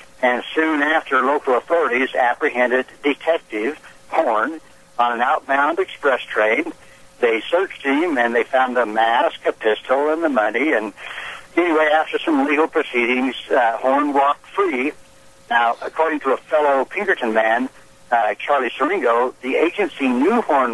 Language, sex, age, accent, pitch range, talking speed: English, male, 60-79, American, 120-155 Hz, 145 wpm